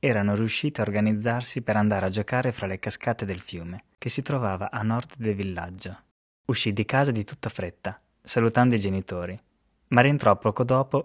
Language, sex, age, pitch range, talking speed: Italian, male, 20-39, 100-125 Hz, 180 wpm